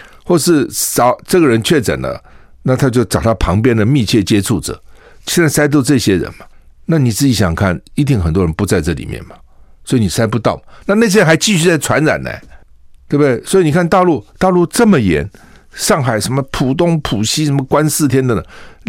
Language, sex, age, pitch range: Chinese, male, 60-79, 95-150 Hz